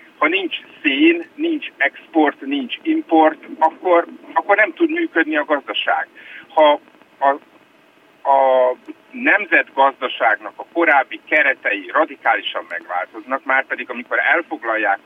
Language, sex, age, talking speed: Hungarian, male, 50-69, 105 wpm